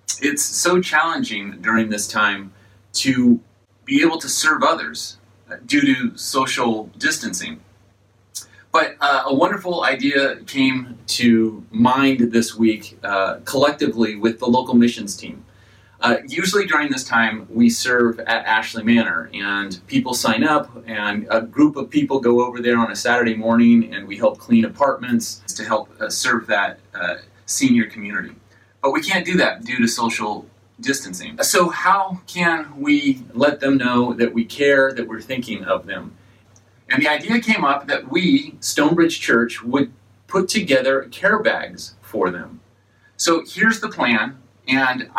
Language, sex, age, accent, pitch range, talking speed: English, male, 30-49, American, 115-175 Hz, 155 wpm